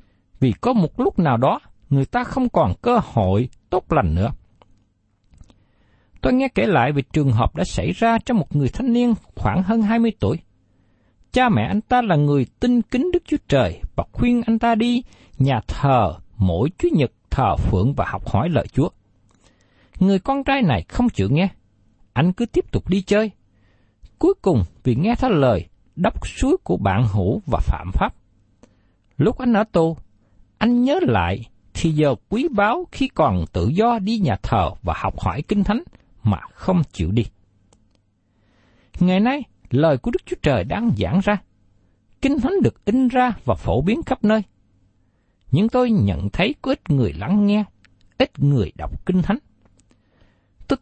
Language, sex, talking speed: Vietnamese, male, 180 wpm